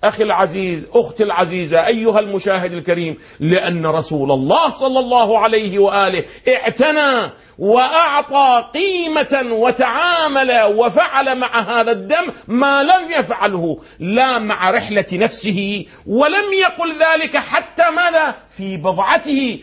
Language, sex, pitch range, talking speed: Arabic, male, 190-260 Hz, 110 wpm